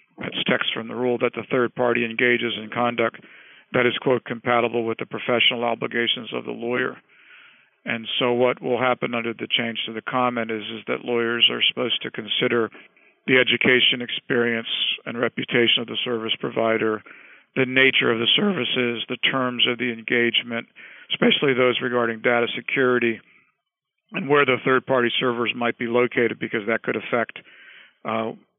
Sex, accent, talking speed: male, American, 170 wpm